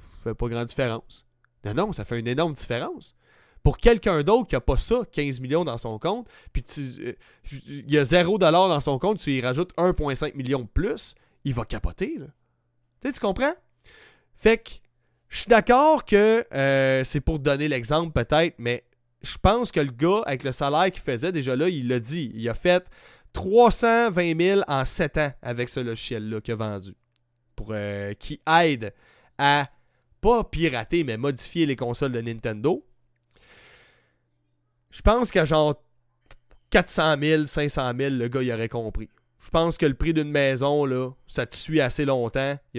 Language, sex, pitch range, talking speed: French, male, 120-160 Hz, 185 wpm